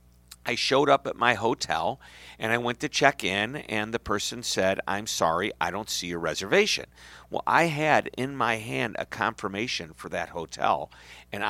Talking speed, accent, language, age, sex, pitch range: 185 wpm, American, English, 50-69, male, 85-110 Hz